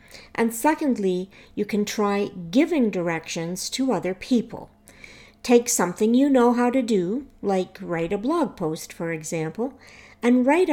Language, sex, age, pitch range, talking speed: English, female, 60-79, 185-265 Hz, 145 wpm